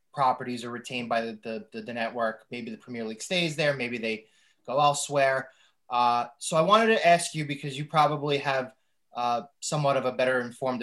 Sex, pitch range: male, 125-145 Hz